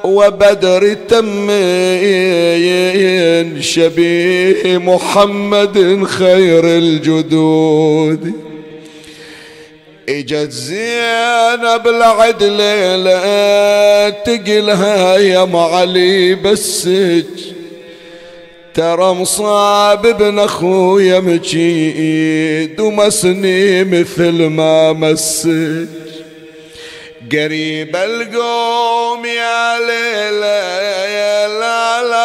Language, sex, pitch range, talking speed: Arabic, male, 165-205 Hz, 50 wpm